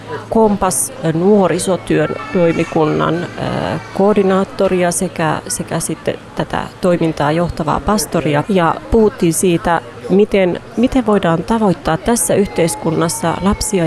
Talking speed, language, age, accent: 90 wpm, Finnish, 30-49, native